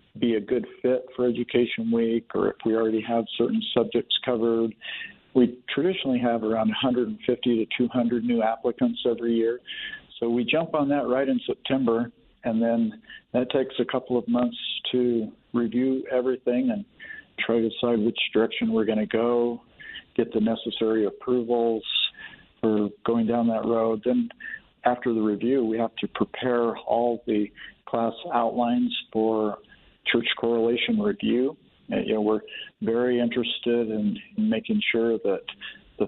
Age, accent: 50-69, American